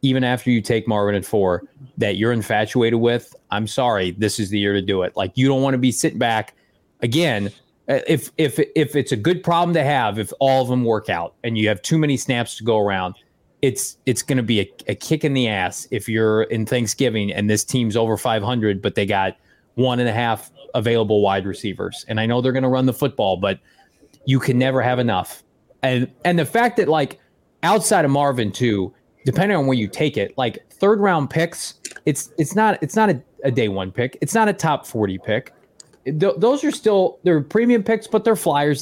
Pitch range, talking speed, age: 110-150 Hz, 225 wpm, 30-49